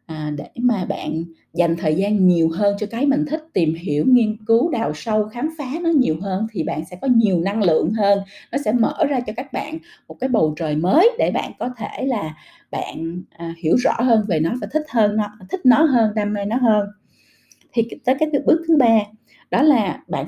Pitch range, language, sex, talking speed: 180-270 Hz, Vietnamese, female, 220 wpm